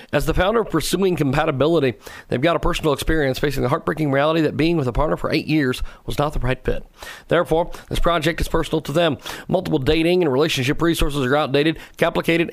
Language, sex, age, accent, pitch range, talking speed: English, male, 40-59, American, 140-170 Hz, 205 wpm